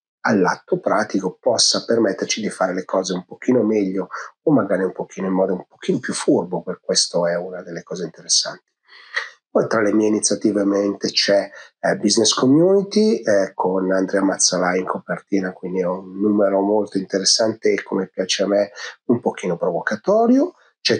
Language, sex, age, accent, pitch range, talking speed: Italian, male, 40-59, native, 95-115 Hz, 170 wpm